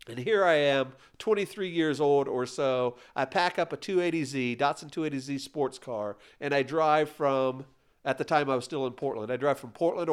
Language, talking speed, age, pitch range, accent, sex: English, 200 wpm, 50-69, 140-185 Hz, American, male